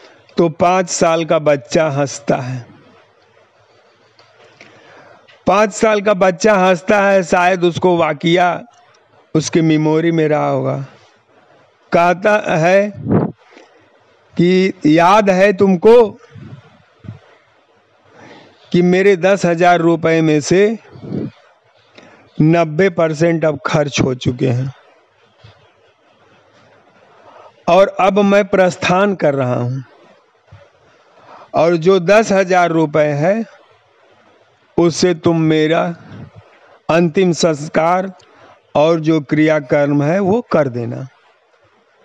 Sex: male